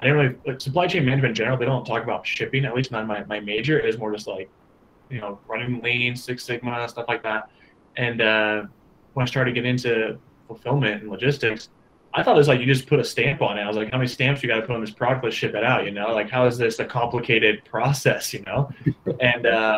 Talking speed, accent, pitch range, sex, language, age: 260 wpm, American, 110-135 Hz, male, English, 20-39